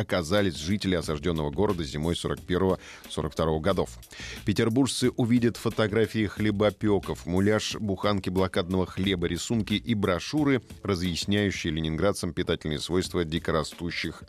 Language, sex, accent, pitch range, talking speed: Russian, male, native, 85-110 Hz, 100 wpm